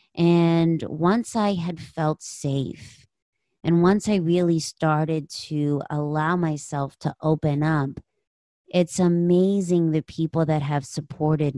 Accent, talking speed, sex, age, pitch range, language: American, 125 wpm, female, 30-49, 145-170 Hz, English